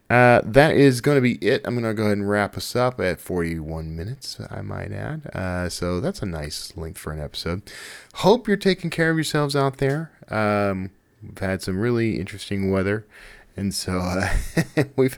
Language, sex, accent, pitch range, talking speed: English, male, American, 90-125 Hz, 195 wpm